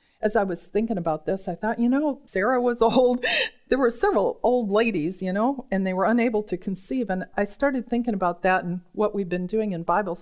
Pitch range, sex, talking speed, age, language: 175-230 Hz, female, 230 wpm, 50-69, English